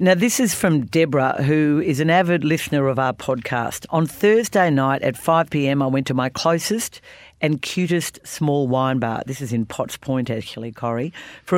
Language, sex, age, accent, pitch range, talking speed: English, female, 50-69, Australian, 130-175 Hz, 185 wpm